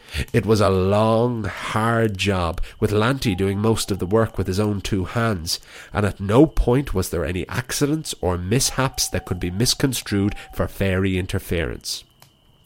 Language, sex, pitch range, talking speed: English, male, 100-125 Hz, 165 wpm